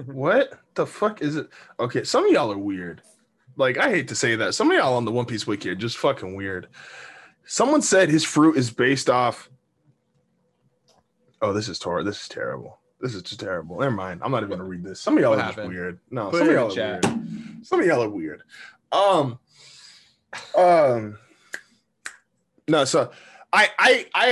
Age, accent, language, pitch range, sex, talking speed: 20-39, American, English, 120-165 Hz, male, 195 wpm